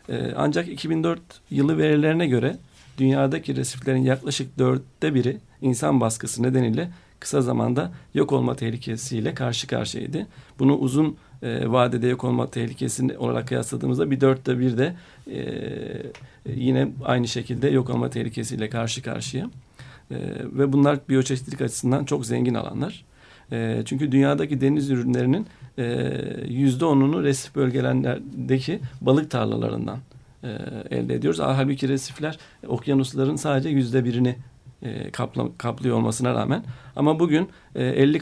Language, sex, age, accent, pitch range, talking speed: Turkish, male, 40-59, native, 125-140 Hz, 110 wpm